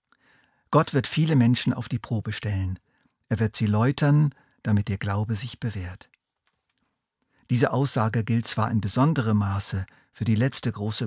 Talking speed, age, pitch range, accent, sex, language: 150 wpm, 50-69, 110-135 Hz, German, male, German